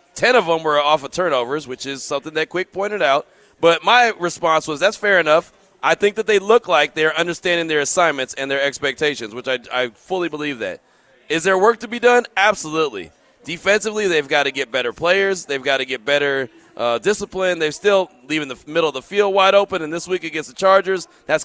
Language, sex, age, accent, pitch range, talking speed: English, male, 30-49, American, 150-200 Hz, 220 wpm